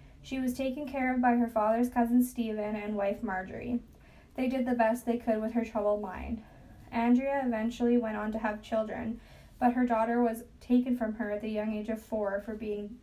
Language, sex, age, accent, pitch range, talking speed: English, female, 10-29, American, 220-245 Hz, 205 wpm